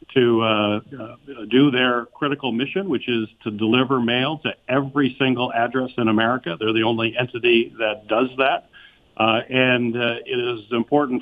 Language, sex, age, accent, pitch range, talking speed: English, male, 50-69, American, 115-135 Hz, 160 wpm